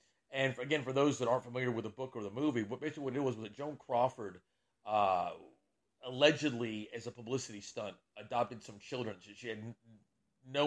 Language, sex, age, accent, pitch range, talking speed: English, male, 40-59, American, 110-130 Hz, 190 wpm